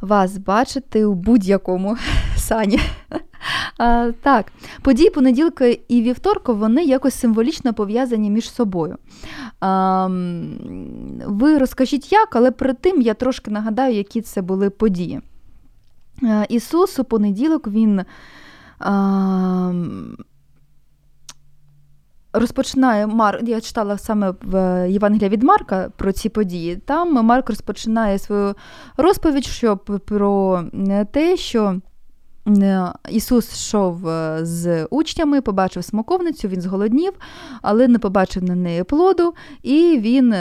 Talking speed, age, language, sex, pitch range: 100 wpm, 20-39, Ukrainian, female, 190-255 Hz